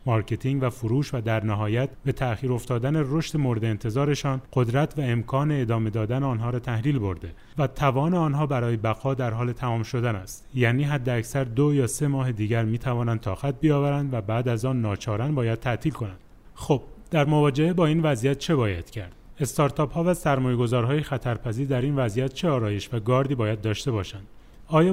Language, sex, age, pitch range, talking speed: Persian, male, 30-49, 115-140 Hz, 180 wpm